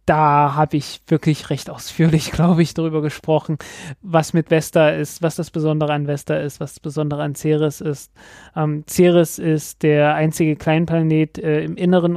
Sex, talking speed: male, 175 wpm